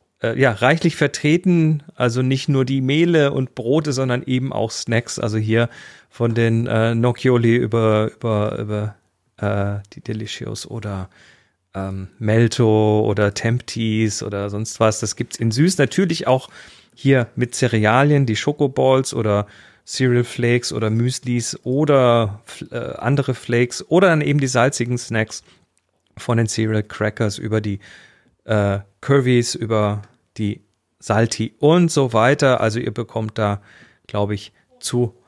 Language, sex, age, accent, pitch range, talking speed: German, male, 40-59, German, 105-135 Hz, 135 wpm